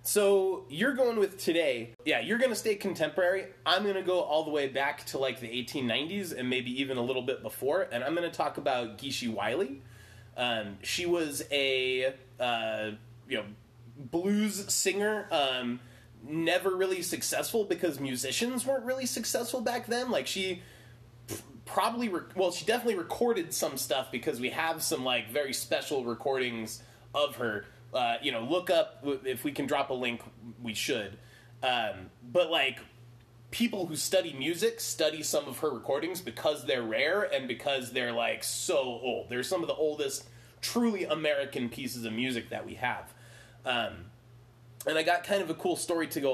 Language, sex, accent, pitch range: English, male, American, 120-180 Hz